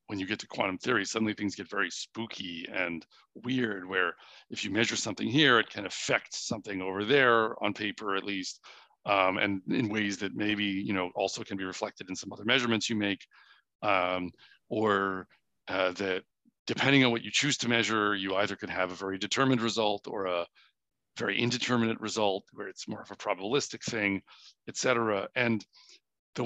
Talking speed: 185 wpm